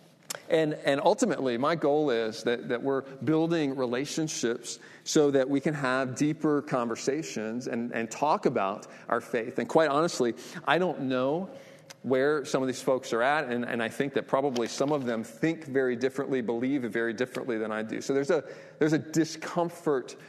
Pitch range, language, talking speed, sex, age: 115-140 Hz, English, 180 wpm, male, 40-59